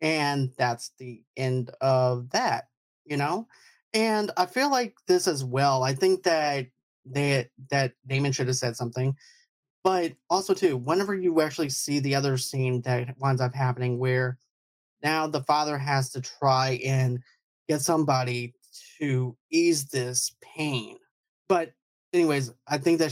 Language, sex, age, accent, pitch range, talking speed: English, male, 30-49, American, 130-165 Hz, 150 wpm